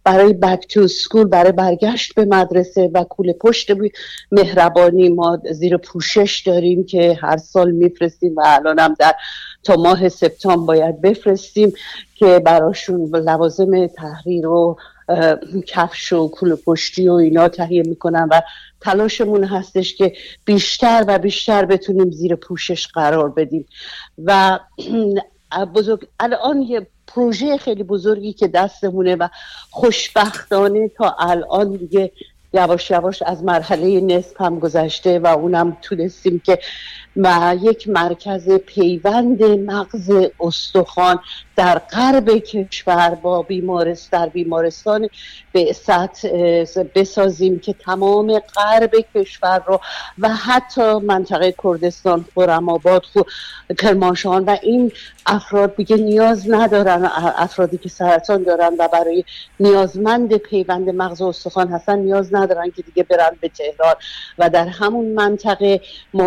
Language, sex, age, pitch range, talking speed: Persian, female, 50-69, 175-205 Hz, 120 wpm